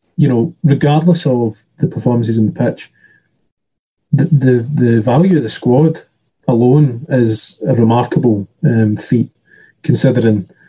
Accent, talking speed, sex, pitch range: British, 130 wpm, male, 115-155 Hz